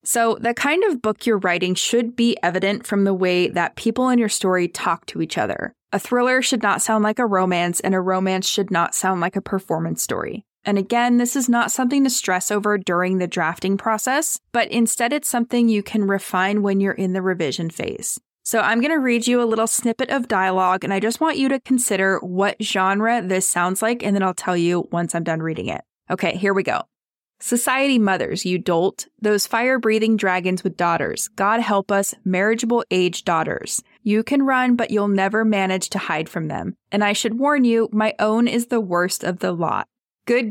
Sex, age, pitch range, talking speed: female, 20-39, 190-240 Hz, 210 wpm